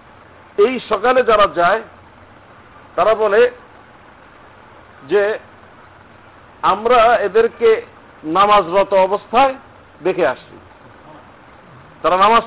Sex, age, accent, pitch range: male, 50-69, native, 205-260 Hz